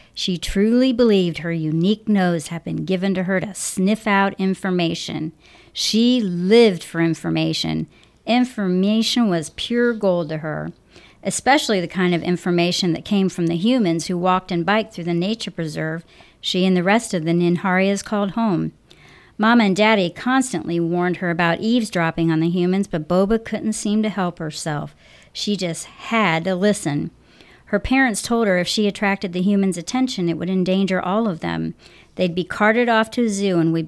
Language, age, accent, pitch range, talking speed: English, 50-69, American, 170-210 Hz, 175 wpm